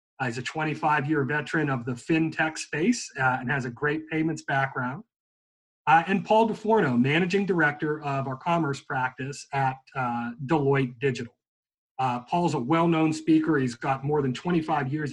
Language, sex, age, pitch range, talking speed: English, male, 40-59, 130-165 Hz, 165 wpm